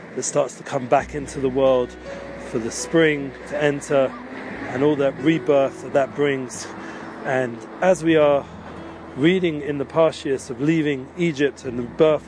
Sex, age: male, 30-49